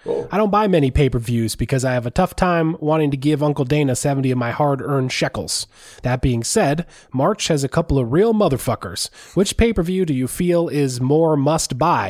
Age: 20-39